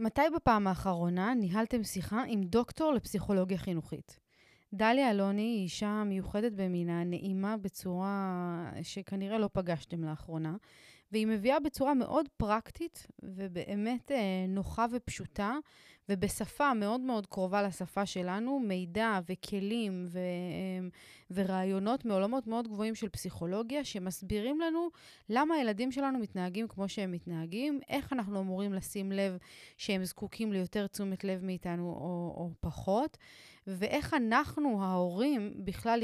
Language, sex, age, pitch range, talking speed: Hebrew, female, 20-39, 185-230 Hz, 120 wpm